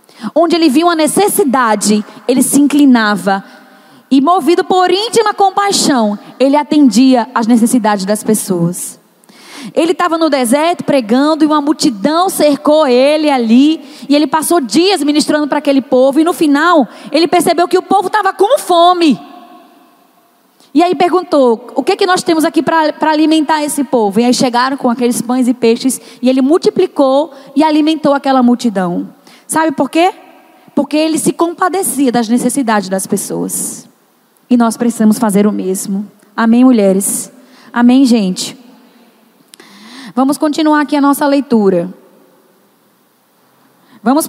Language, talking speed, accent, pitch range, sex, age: Portuguese, 145 wpm, Brazilian, 245-315 Hz, female, 10-29